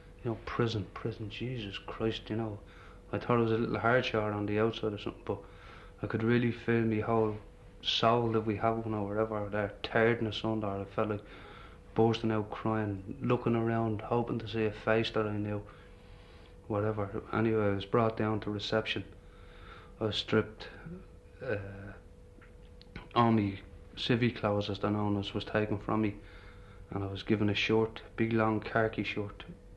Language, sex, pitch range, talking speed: English, male, 100-110 Hz, 175 wpm